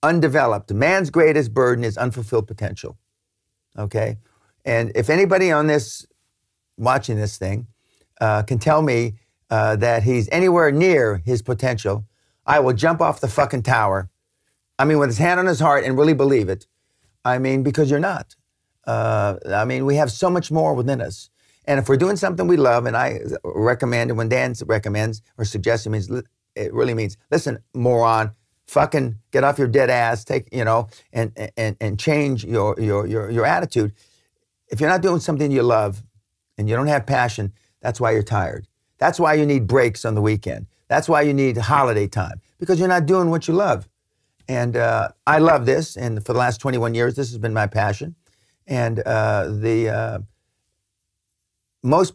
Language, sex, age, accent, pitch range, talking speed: English, male, 50-69, American, 105-140 Hz, 185 wpm